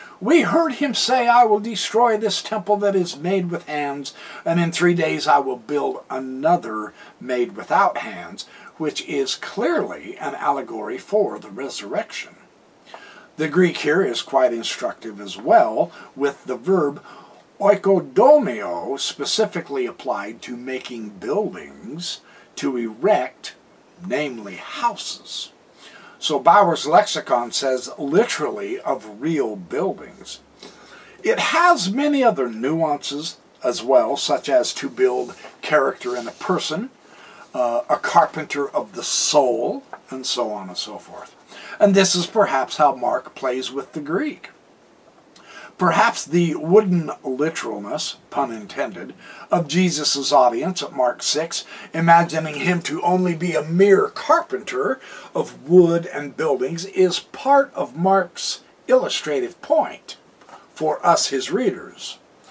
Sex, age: male, 60-79